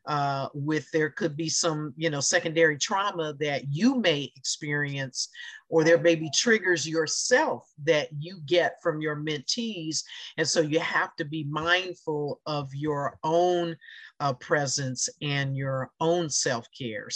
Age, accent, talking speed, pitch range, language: 50-69, American, 145 wpm, 145-170 Hz, English